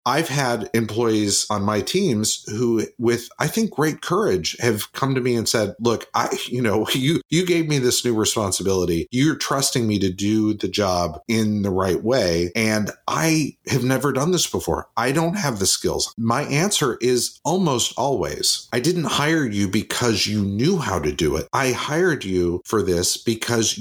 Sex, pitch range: male, 100-130 Hz